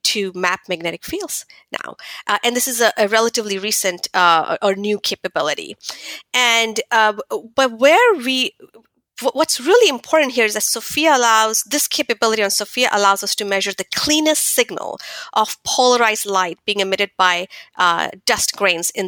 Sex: female